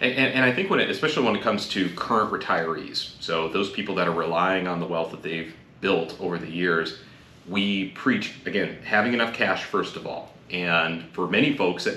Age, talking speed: 30-49, 215 wpm